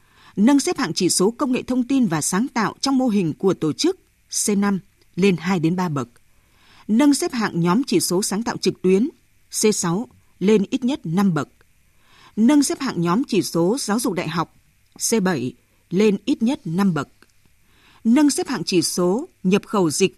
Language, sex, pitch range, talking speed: Vietnamese, female, 170-245 Hz, 190 wpm